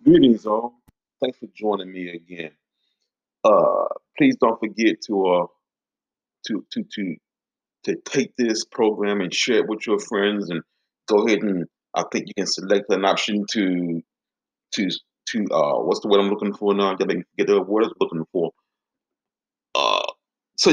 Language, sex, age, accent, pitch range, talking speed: English, male, 30-49, American, 95-140 Hz, 170 wpm